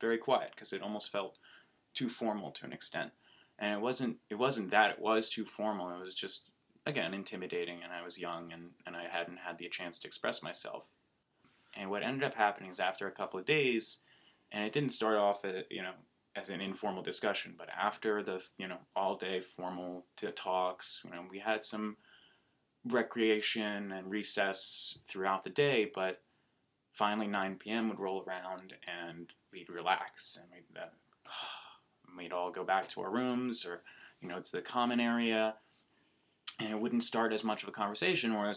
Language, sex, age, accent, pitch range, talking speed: English, male, 20-39, American, 90-110 Hz, 190 wpm